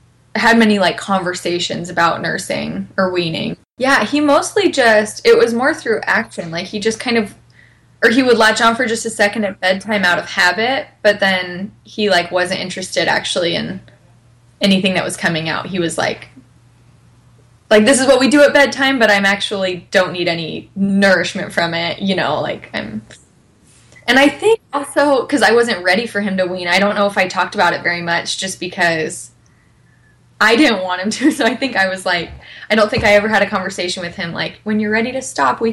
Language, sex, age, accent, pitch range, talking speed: English, female, 20-39, American, 180-225 Hz, 210 wpm